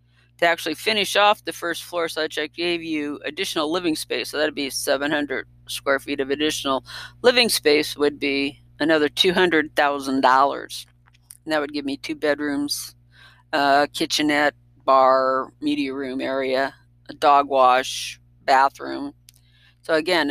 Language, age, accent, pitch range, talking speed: English, 50-69, American, 130-160 Hz, 140 wpm